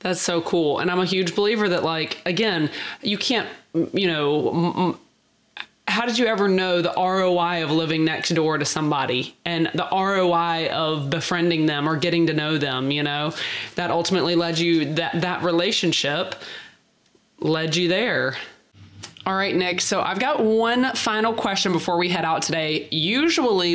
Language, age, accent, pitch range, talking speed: English, 20-39, American, 160-185 Hz, 165 wpm